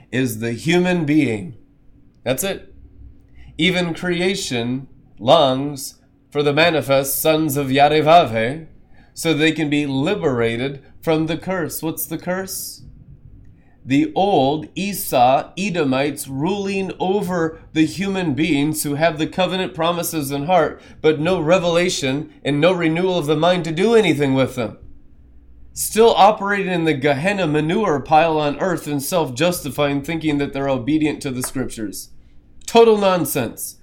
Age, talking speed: 30-49, 135 wpm